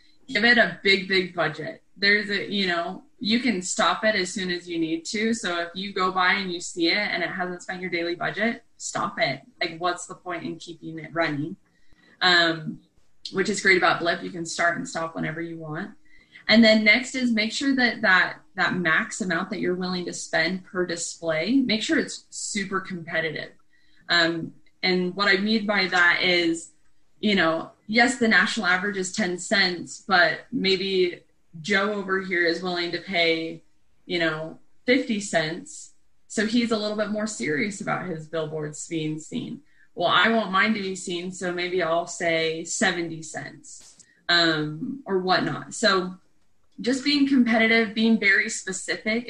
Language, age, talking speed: English, 20-39, 180 wpm